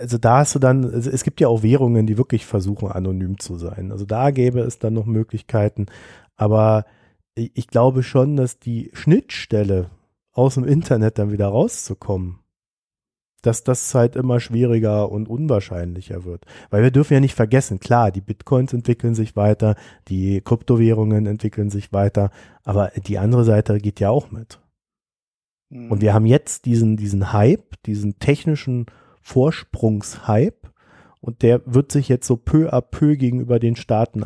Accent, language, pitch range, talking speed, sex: German, German, 100-120 Hz, 160 wpm, male